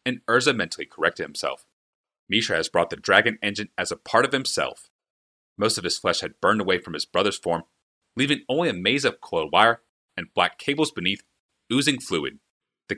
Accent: American